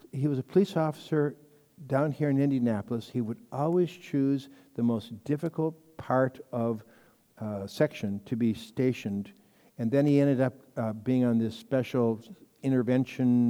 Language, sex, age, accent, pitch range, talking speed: English, male, 60-79, American, 120-150 Hz, 150 wpm